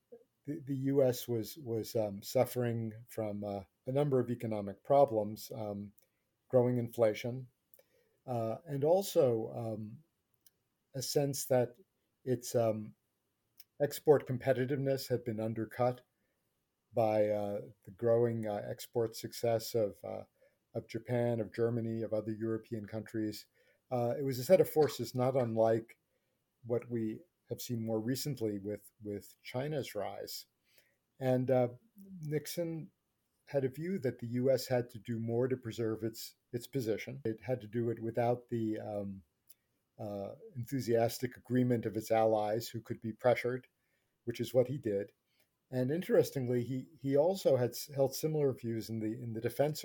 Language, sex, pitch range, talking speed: English, male, 110-130 Hz, 145 wpm